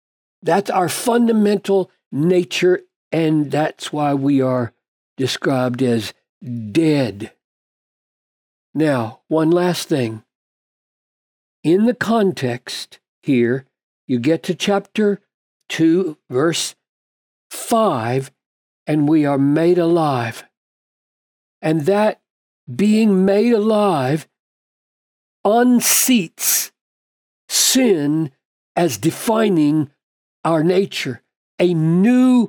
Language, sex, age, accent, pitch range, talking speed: English, male, 60-79, American, 150-215 Hz, 85 wpm